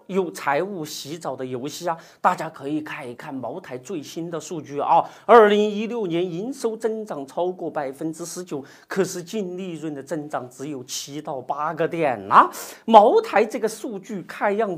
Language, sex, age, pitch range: Chinese, male, 40-59, 170-280 Hz